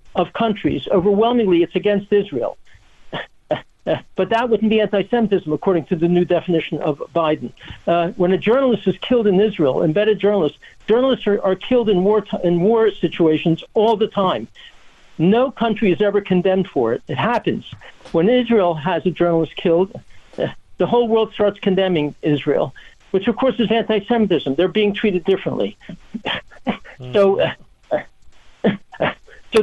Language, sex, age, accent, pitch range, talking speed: English, male, 60-79, American, 180-225 Hz, 150 wpm